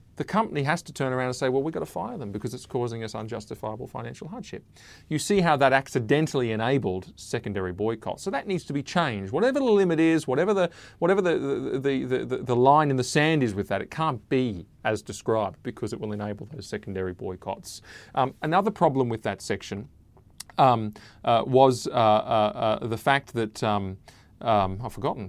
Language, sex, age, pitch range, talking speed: English, male, 30-49, 105-135 Hz, 200 wpm